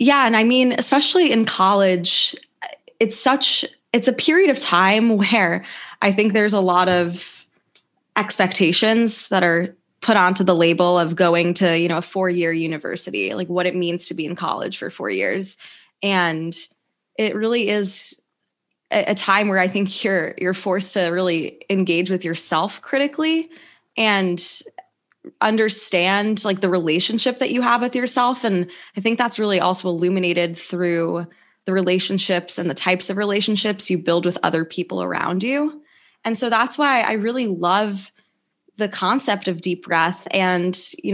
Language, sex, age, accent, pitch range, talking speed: English, female, 20-39, American, 175-220 Hz, 165 wpm